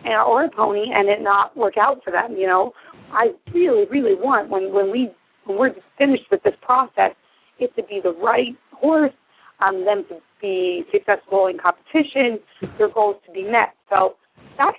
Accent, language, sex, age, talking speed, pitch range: American, English, female, 30-49, 185 wpm, 190-270 Hz